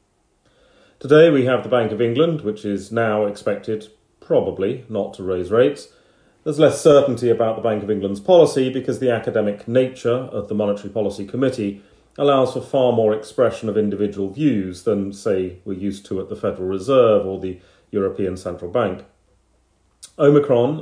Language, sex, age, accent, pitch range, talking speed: English, male, 40-59, British, 100-125 Hz, 165 wpm